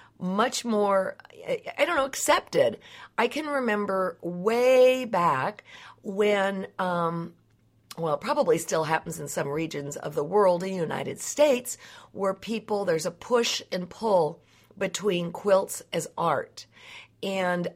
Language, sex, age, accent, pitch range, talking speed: English, female, 50-69, American, 175-245 Hz, 130 wpm